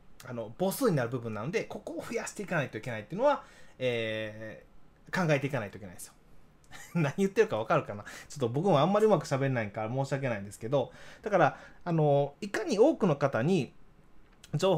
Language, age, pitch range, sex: Japanese, 20-39, 135-215 Hz, male